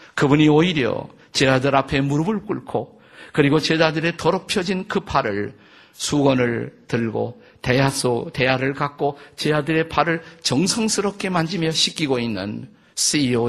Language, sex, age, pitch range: Korean, male, 50-69, 120-155 Hz